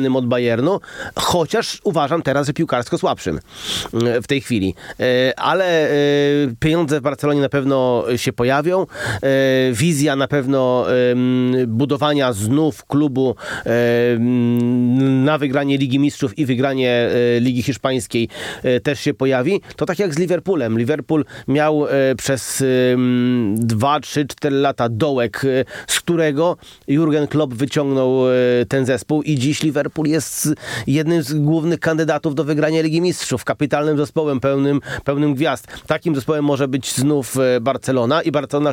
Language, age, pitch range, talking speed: Polish, 30-49, 125-150 Hz, 125 wpm